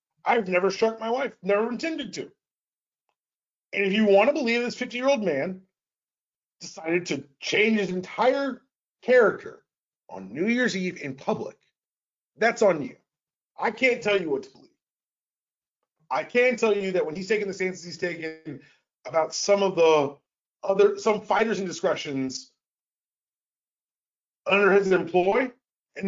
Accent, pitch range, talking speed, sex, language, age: American, 165-220 Hz, 145 wpm, male, English, 30-49